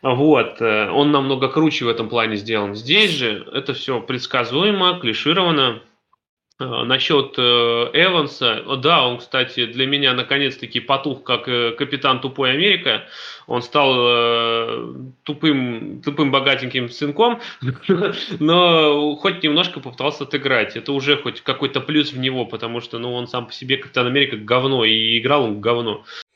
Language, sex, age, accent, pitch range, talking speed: Russian, male, 20-39, native, 120-150 Hz, 135 wpm